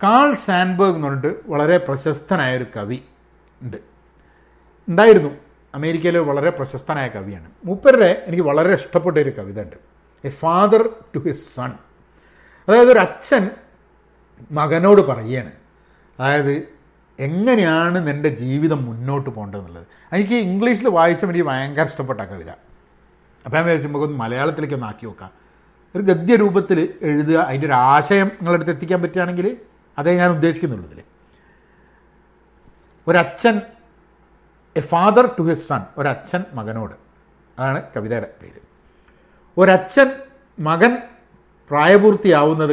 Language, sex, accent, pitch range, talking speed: Malayalam, male, native, 130-185 Hz, 110 wpm